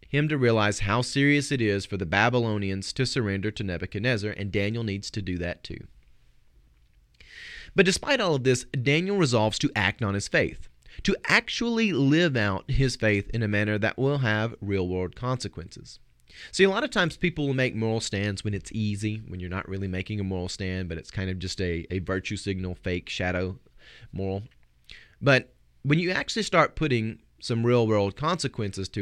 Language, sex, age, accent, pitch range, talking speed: English, male, 30-49, American, 95-135 Hz, 185 wpm